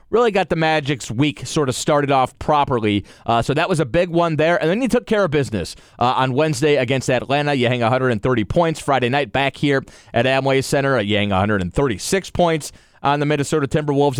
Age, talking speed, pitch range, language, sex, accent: 30-49, 205 wpm, 125-155 Hz, English, male, American